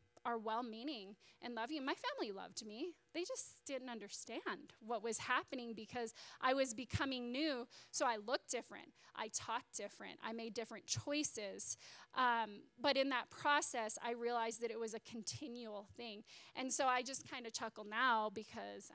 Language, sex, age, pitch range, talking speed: English, female, 20-39, 225-305 Hz, 175 wpm